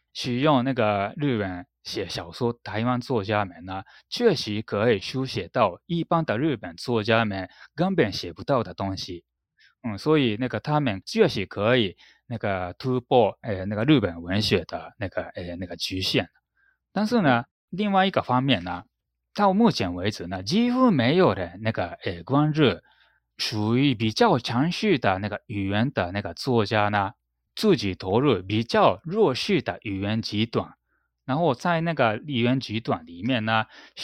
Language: Chinese